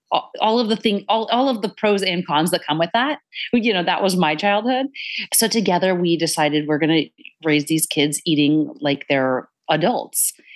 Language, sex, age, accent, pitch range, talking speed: English, female, 30-49, American, 155-225 Hz, 200 wpm